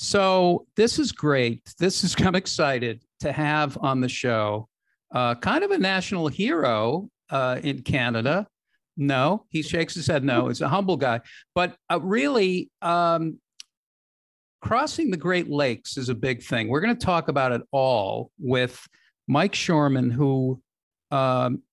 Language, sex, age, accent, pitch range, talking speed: English, male, 50-69, American, 125-170 Hz, 155 wpm